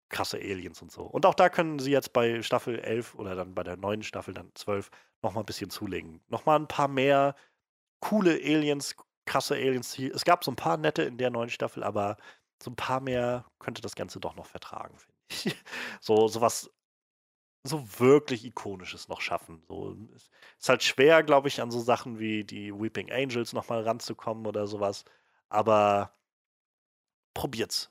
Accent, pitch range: German, 105-140 Hz